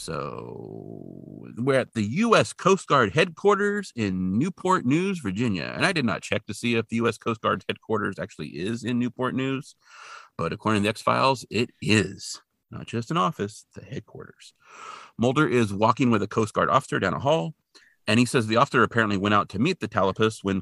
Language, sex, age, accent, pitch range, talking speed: English, male, 40-59, American, 95-125 Hz, 195 wpm